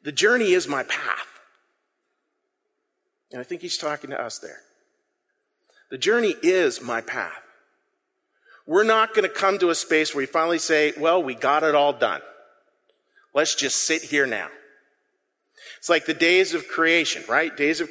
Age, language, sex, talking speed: 40-59, English, male, 170 wpm